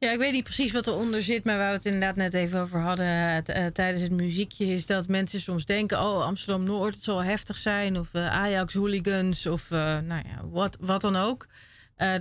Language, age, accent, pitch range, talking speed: Dutch, 30-49, Dutch, 165-195 Hz, 200 wpm